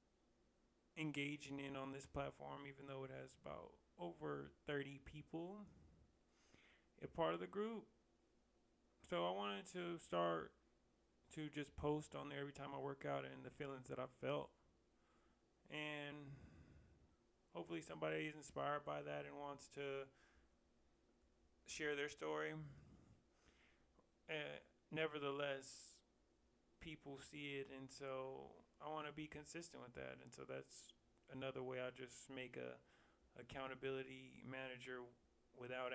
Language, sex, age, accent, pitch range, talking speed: English, male, 20-39, American, 115-150 Hz, 130 wpm